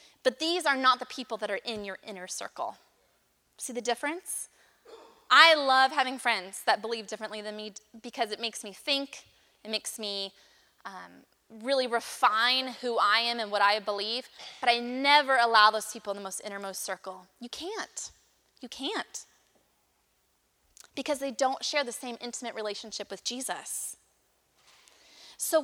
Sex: female